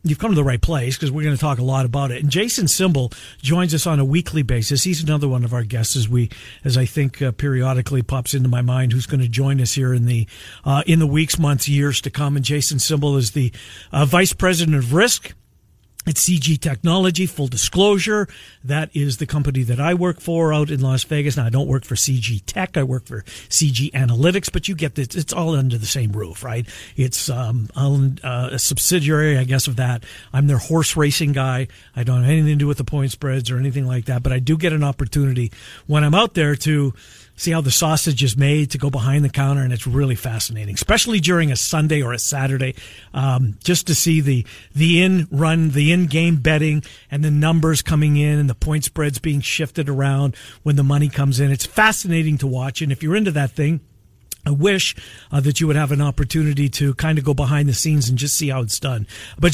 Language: English